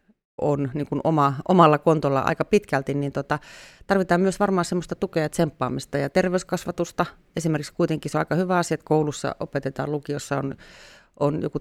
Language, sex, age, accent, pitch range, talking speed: Finnish, female, 30-49, native, 145-175 Hz, 160 wpm